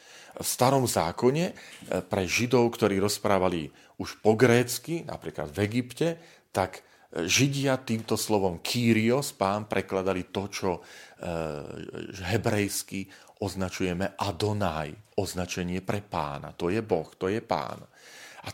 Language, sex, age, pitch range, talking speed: Slovak, male, 40-59, 85-105 Hz, 115 wpm